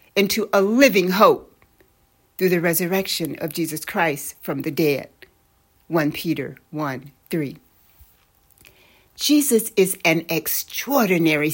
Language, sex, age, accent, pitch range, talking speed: English, female, 60-79, American, 145-205 Hz, 110 wpm